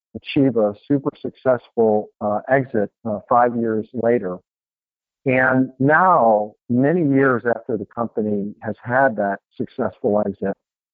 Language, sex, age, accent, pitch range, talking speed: English, male, 50-69, American, 105-130 Hz, 120 wpm